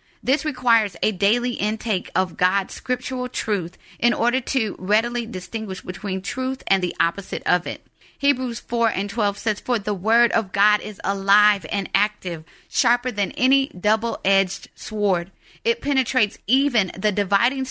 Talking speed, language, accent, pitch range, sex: 155 wpm, English, American, 200-255 Hz, female